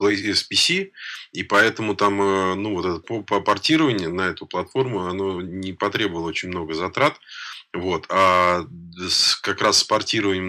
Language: Russian